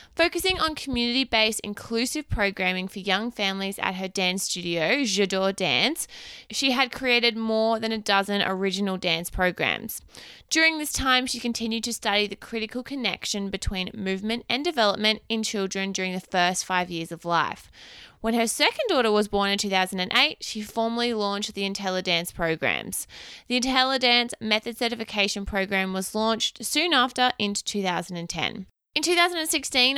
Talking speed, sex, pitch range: 150 wpm, female, 195-235 Hz